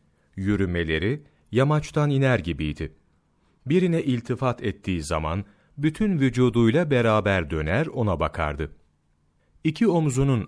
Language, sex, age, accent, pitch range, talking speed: Turkish, male, 40-59, native, 80-125 Hz, 90 wpm